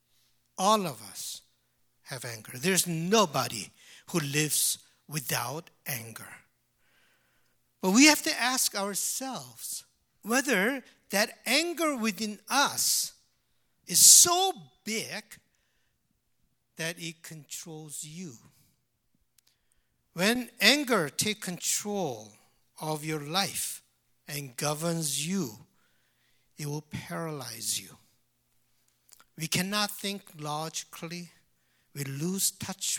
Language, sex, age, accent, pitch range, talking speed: English, male, 60-79, Japanese, 135-210 Hz, 90 wpm